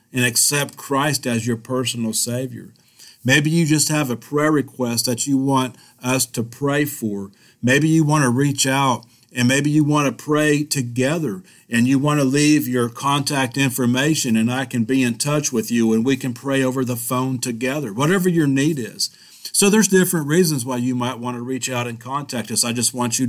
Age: 50-69